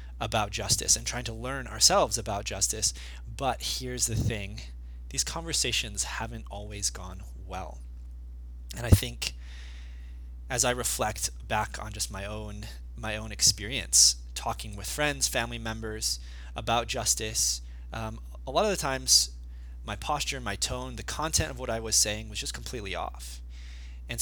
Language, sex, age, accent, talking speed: English, male, 20-39, American, 155 wpm